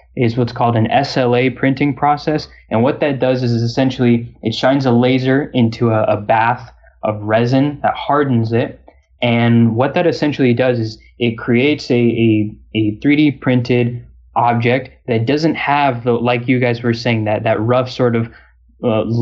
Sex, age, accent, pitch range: male, 20-39, American, 115-135 Hz